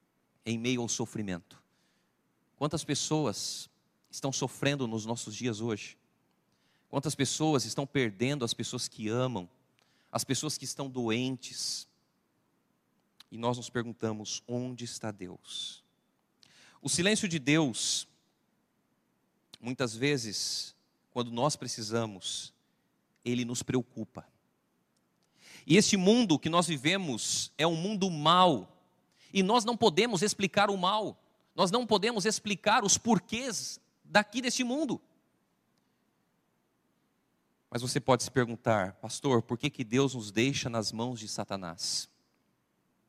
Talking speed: 120 wpm